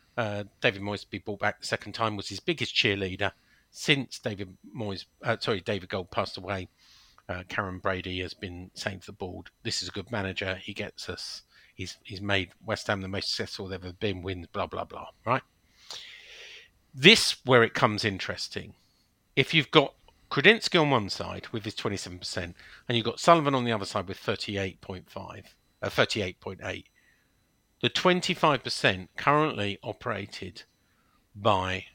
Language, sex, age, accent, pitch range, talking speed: English, male, 50-69, British, 95-130 Hz, 165 wpm